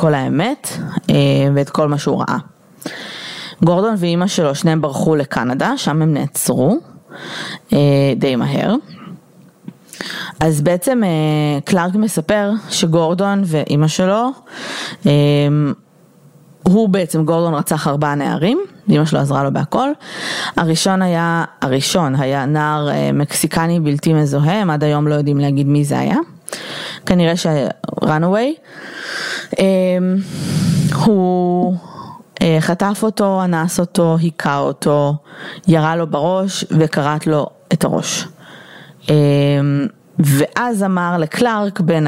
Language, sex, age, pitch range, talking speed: Hebrew, female, 20-39, 150-190 Hz, 110 wpm